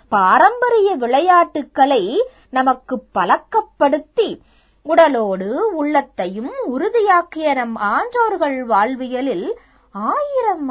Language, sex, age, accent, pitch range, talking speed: Tamil, female, 20-39, native, 260-375 Hz, 60 wpm